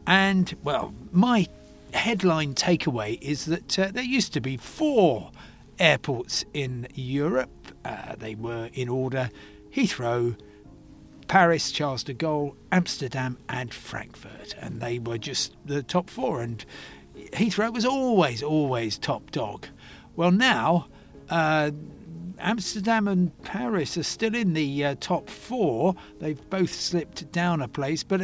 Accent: British